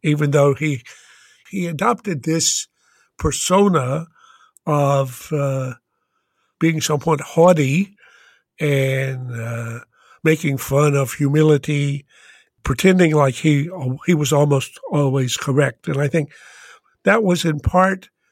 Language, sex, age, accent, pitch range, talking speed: English, male, 60-79, American, 130-160 Hz, 110 wpm